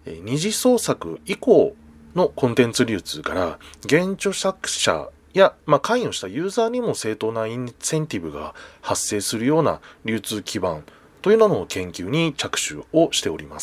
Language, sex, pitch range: Japanese, male, 115-185 Hz